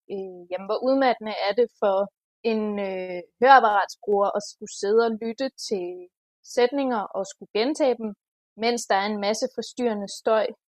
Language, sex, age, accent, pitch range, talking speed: Danish, female, 20-39, native, 200-245 Hz, 150 wpm